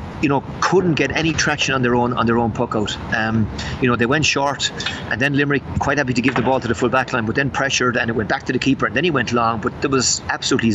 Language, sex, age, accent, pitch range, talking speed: English, male, 30-49, Irish, 115-130 Hz, 295 wpm